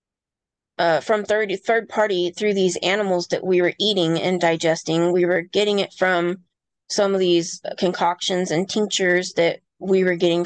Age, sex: 20-39, female